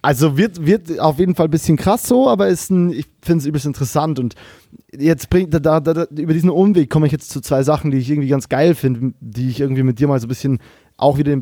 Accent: German